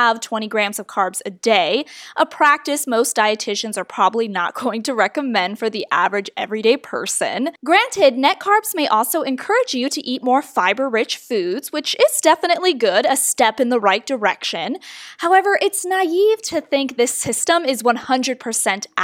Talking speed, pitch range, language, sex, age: 165 wpm, 225-325 Hz, English, female, 10-29